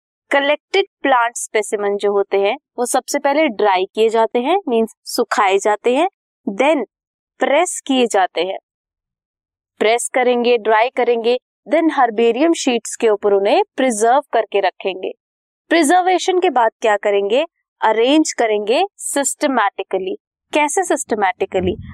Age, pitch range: 20-39, 215-305 Hz